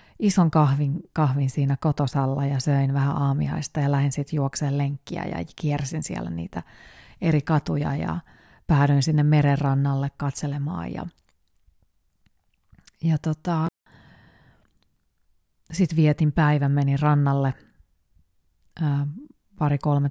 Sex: female